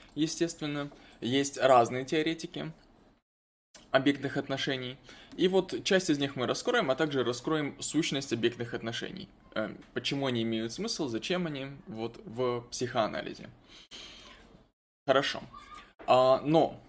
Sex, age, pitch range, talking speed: male, 20-39, 120-160 Hz, 105 wpm